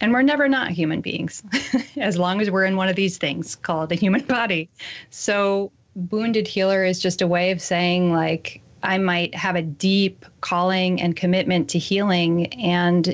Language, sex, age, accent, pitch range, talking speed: English, female, 30-49, American, 170-200 Hz, 185 wpm